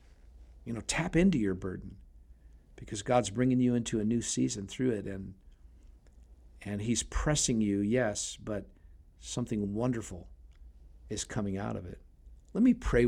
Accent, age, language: American, 50-69, English